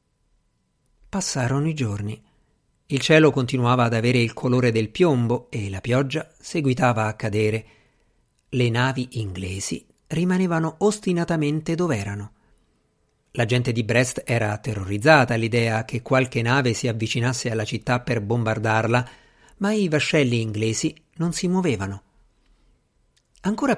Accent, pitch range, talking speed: native, 115-160 Hz, 125 wpm